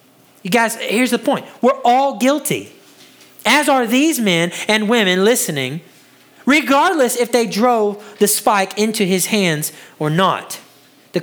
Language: English